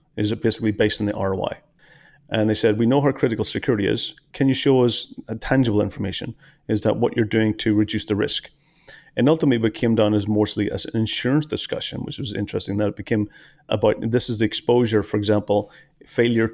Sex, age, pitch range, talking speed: male, 30-49, 105-125 Hz, 205 wpm